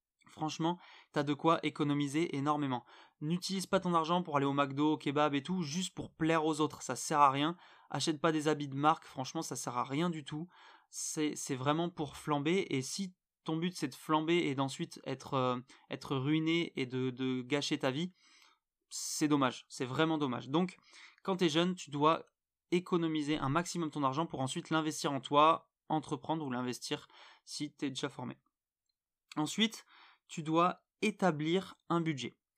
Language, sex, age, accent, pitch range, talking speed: French, male, 20-39, French, 140-165 Hz, 180 wpm